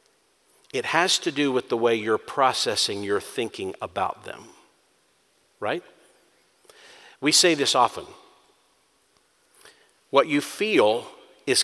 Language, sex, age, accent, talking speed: English, male, 50-69, American, 115 wpm